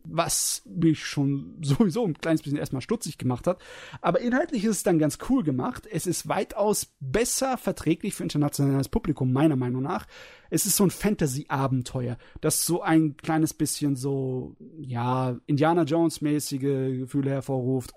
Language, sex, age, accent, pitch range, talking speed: German, male, 30-49, German, 135-170 Hz, 155 wpm